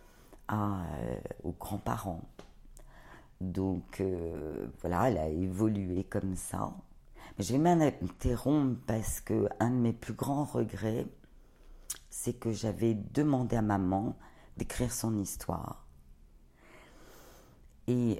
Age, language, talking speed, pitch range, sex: 50-69, French, 110 wpm, 95-135 Hz, female